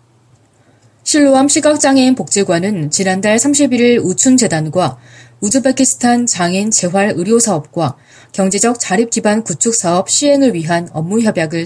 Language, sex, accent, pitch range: Korean, female, native, 160-235 Hz